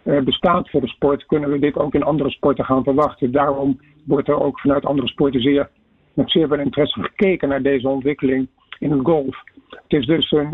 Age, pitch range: 50-69, 140-160 Hz